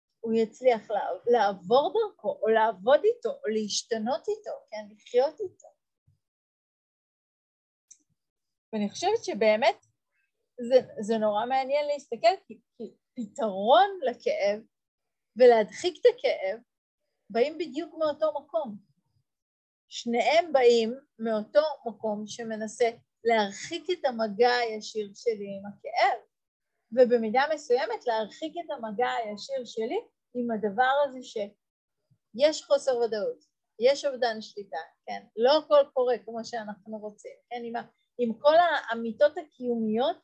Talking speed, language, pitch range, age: 105 wpm, Hebrew, 215-295 Hz, 30-49